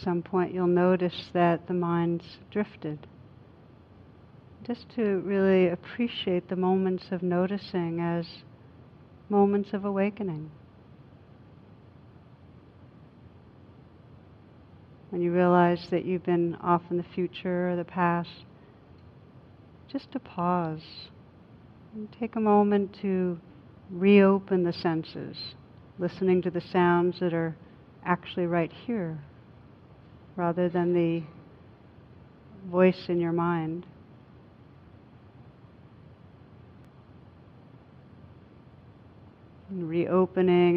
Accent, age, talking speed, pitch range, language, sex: American, 60-79, 90 wpm, 155-185 Hz, English, female